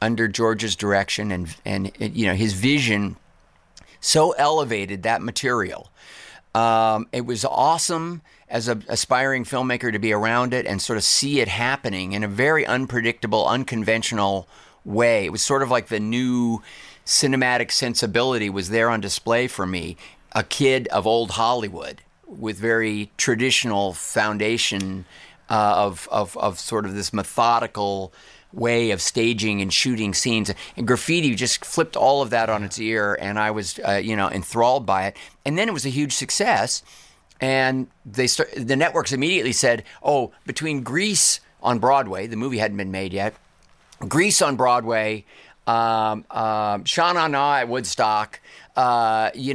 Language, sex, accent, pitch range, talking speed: English, male, American, 105-130 Hz, 155 wpm